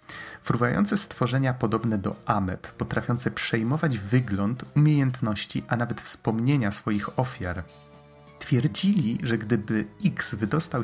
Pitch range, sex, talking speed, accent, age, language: 100-125 Hz, male, 105 wpm, native, 30-49, Polish